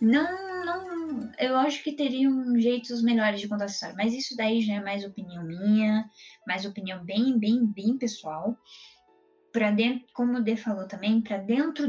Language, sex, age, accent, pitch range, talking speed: Portuguese, female, 10-29, Brazilian, 205-240 Hz, 170 wpm